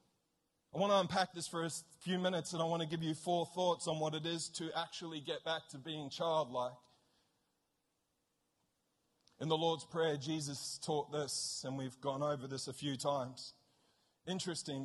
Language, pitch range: English, 140-165 Hz